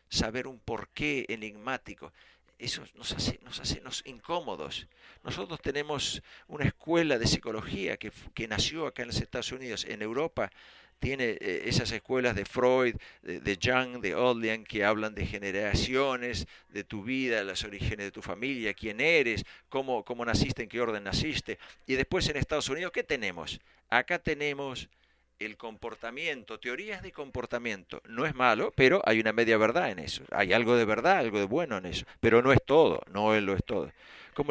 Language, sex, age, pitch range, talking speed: Spanish, male, 50-69, 105-130 Hz, 175 wpm